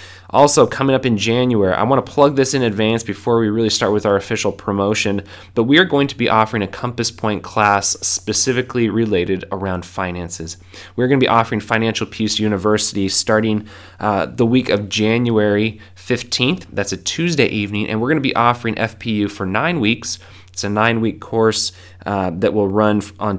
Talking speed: 185 wpm